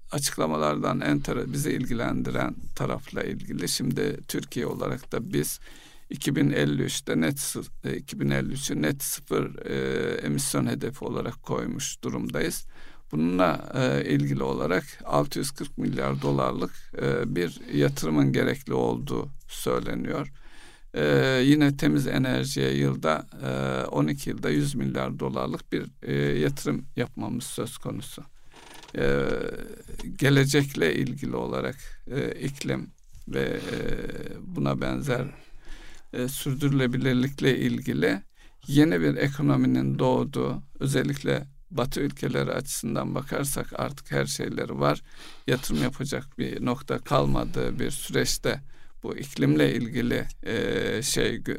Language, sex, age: Turkish, male, 60-79